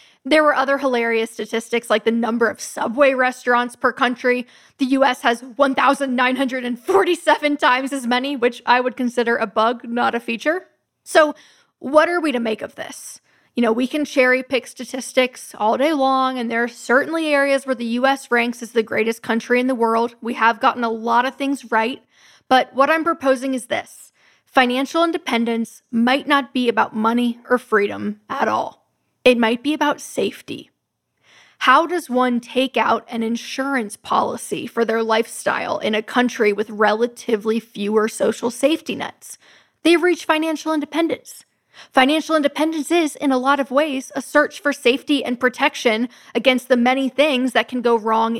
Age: 10-29